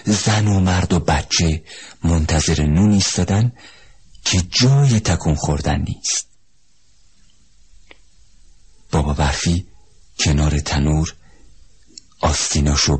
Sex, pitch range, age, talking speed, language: male, 75-100 Hz, 50-69, 85 wpm, Persian